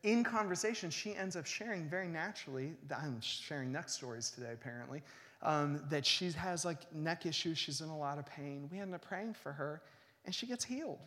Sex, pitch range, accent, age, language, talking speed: male, 135-190 Hz, American, 30-49, English, 200 wpm